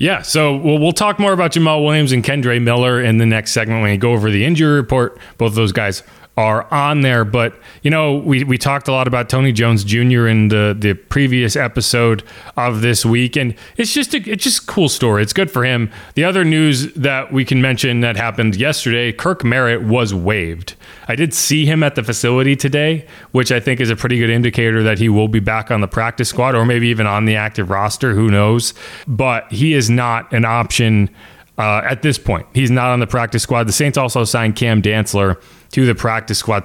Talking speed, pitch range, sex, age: 220 wpm, 110-135 Hz, male, 30-49